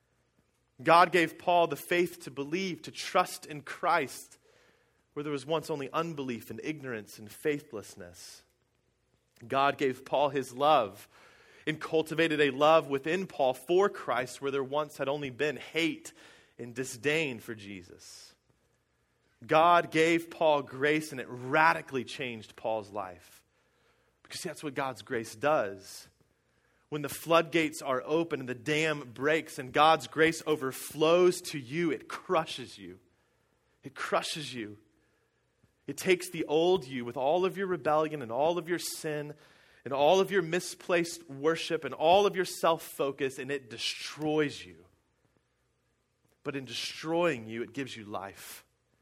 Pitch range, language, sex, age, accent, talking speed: 120-160 Hz, English, male, 30-49, American, 145 wpm